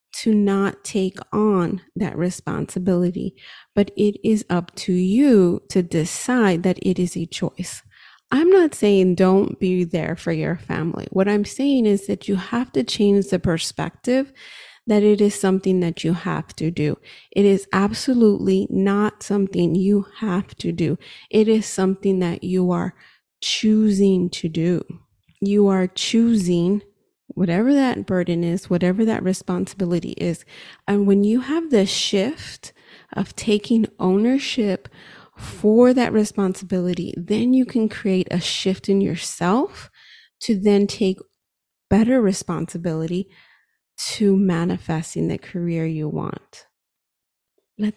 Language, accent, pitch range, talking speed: English, American, 180-215 Hz, 135 wpm